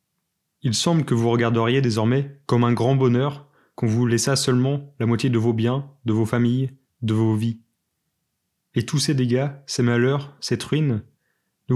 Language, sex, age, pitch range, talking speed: French, male, 20-39, 120-145 Hz, 175 wpm